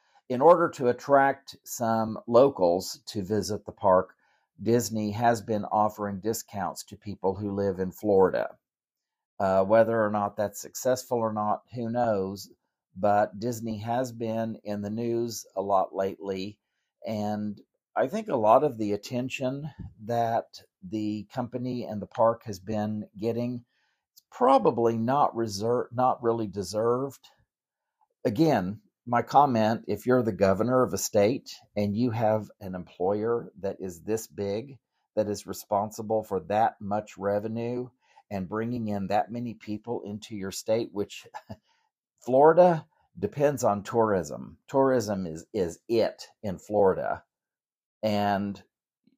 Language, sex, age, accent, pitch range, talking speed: English, male, 50-69, American, 100-120 Hz, 135 wpm